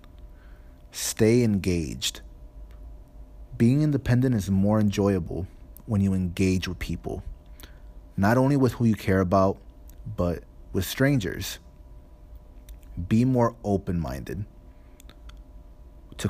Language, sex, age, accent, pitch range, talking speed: English, male, 30-49, American, 65-100 Hz, 95 wpm